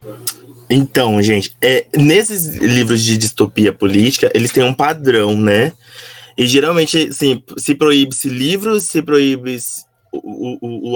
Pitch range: 125-175 Hz